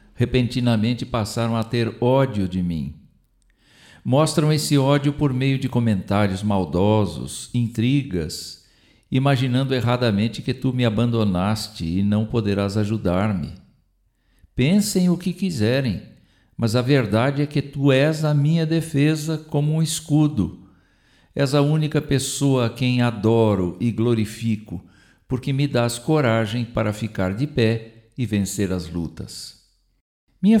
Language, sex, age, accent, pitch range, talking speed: Portuguese, male, 60-79, Brazilian, 105-140 Hz, 125 wpm